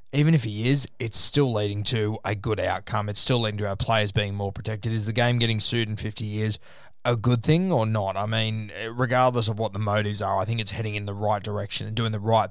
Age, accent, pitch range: 20-39, Australian, 105-120 Hz